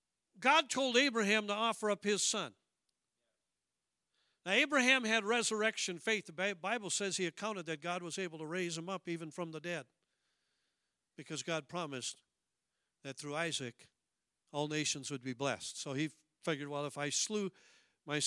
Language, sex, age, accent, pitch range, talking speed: English, male, 50-69, American, 155-230 Hz, 160 wpm